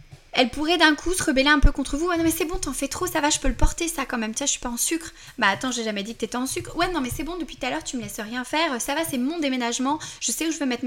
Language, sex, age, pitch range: French, female, 20-39, 230-290 Hz